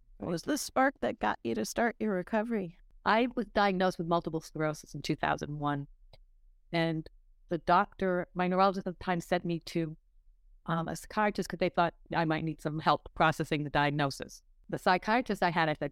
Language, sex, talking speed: English, female, 185 wpm